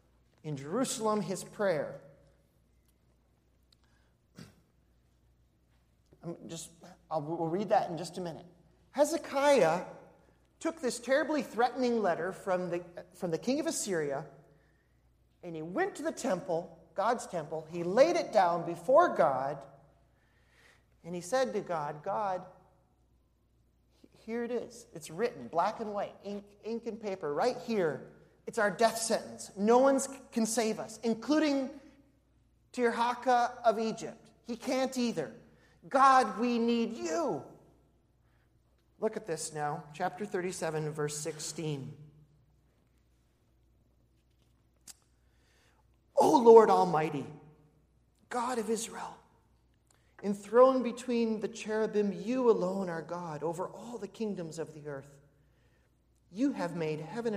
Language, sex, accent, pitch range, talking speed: English, male, American, 155-235 Hz, 120 wpm